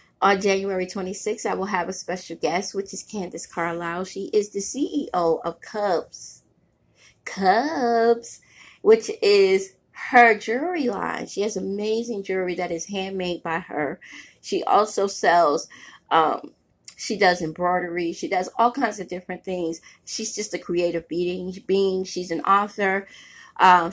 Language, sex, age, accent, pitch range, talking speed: English, female, 30-49, American, 175-215 Hz, 145 wpm